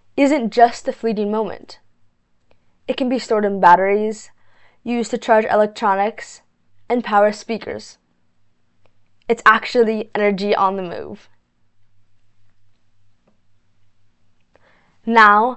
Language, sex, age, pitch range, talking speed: English, female, 10-29, 185-245 Hz, 95 wpm